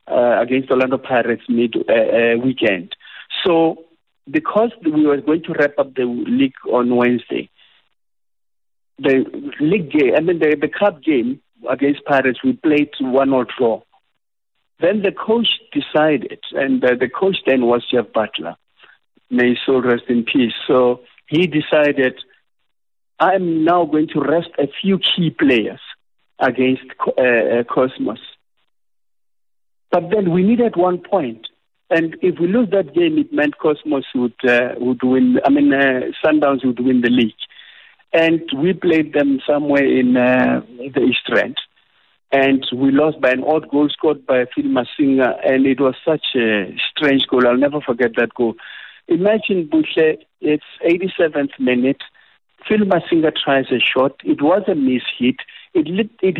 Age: 50-69